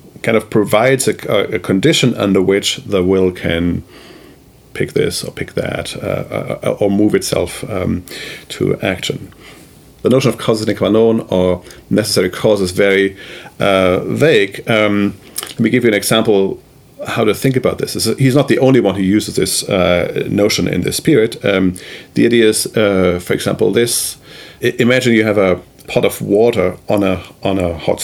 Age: 40-59